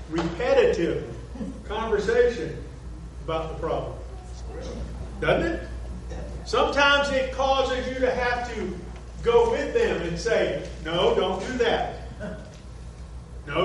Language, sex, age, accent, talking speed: English, male, 50-69, American, 105 wpm